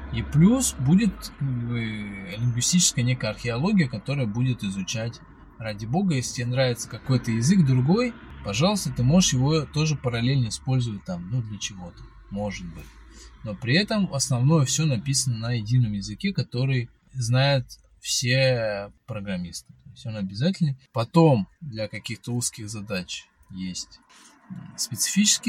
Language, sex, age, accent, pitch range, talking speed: Russian, male, 20-39, native, 110-145 Hz, 130 wpm